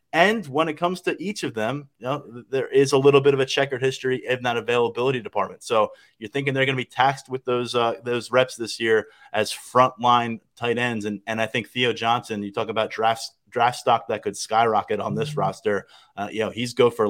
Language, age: English, 20-39